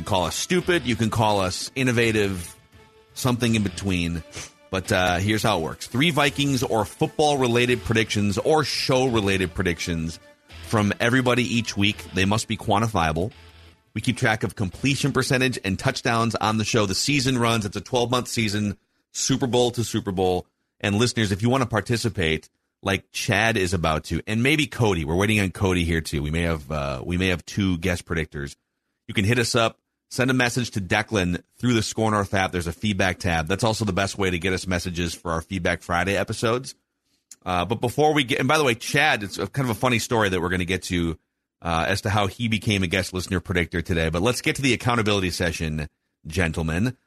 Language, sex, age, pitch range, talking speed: English, male, 30-49, 90-125 Hz, 210 wpm